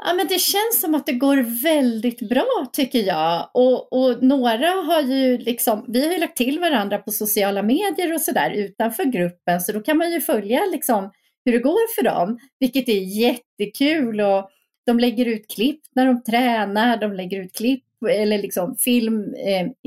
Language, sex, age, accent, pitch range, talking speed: Swedish, female, 30-49, native, 195-260 Hz, 185 wpm